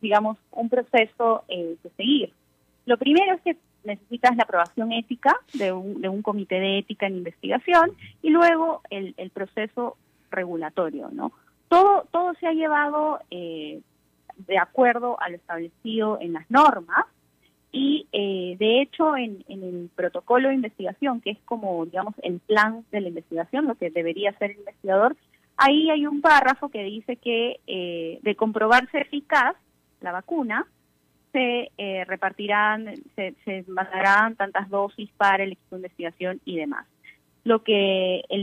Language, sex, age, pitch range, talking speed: Spanish, female, 20-39, 185-250 Hz, 155 wpm